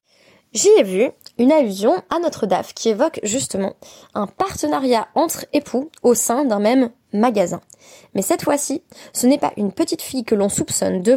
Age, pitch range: 20-39, 195-285 Hz